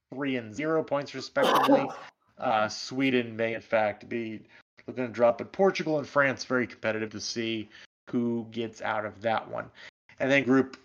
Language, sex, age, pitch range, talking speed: English, male, 30-49, 120-150 Hz, 170 wpm